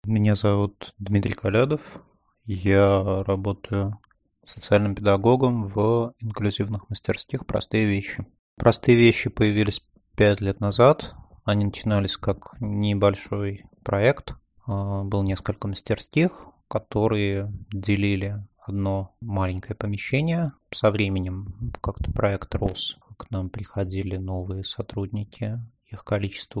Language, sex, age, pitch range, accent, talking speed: Russian, male, 20-39, 100-115 Hz, native, 100 wpm